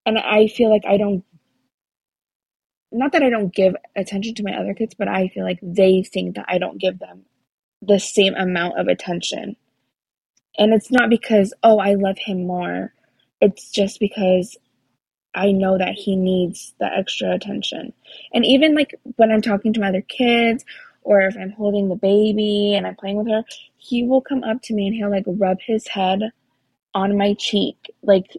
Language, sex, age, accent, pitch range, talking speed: English, female, 20-39, American, 190-230 Hz, 190 wpm